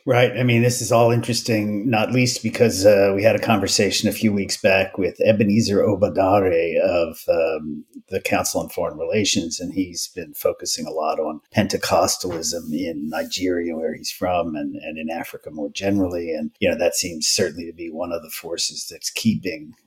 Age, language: 50-69, English